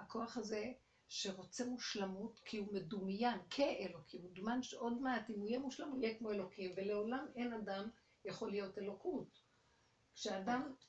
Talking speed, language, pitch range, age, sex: 150 wpm, Hebrew, 190-245 Hz, 60-79, female